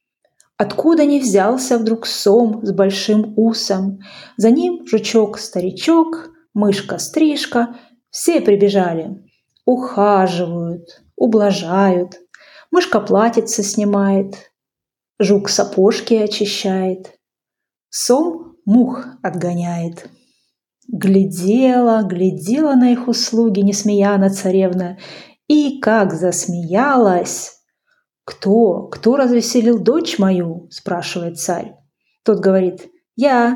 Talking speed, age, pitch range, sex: 80 wpm, 30-49, 190-245 Hz, female